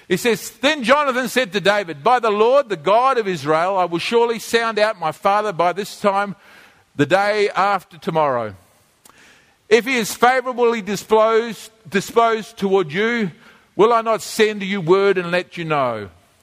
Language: English